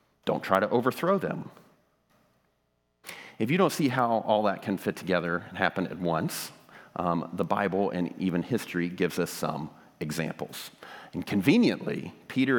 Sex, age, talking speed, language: male, 40-59, 155 wpm, English